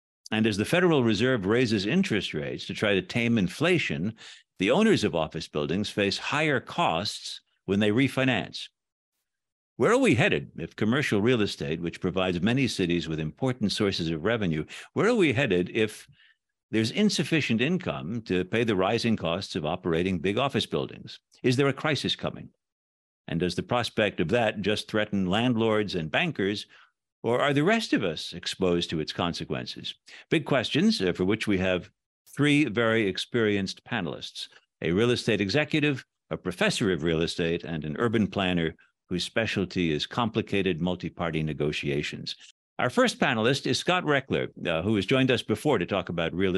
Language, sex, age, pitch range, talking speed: English, male, 60-79, 85-120 Hz, 165 wpm